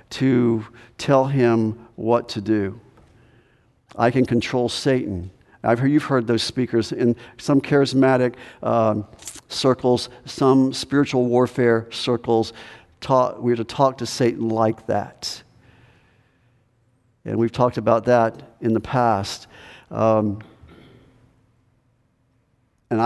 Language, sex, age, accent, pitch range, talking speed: English, male, 50-69, American, 115-140 Hz, 110 wpm